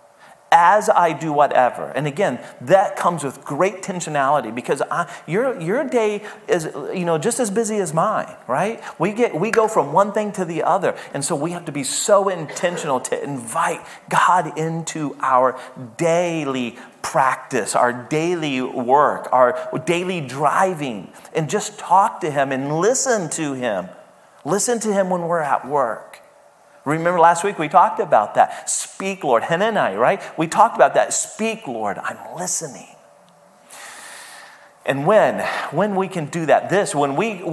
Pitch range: 145-200 Hz